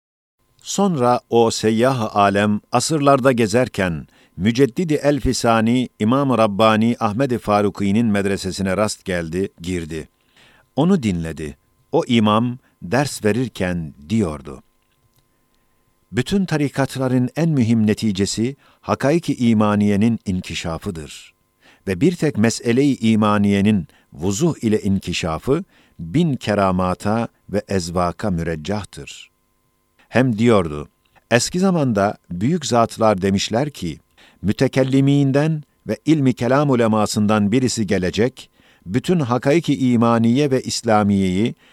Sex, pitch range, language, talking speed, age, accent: male, 100-130 Hz, Turkish, 95 wpm, 50-69, native